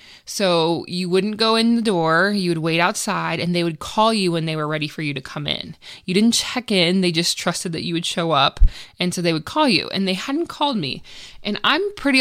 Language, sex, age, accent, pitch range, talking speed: English, female, 20-39, American, 165-205 Hz, 250 wpm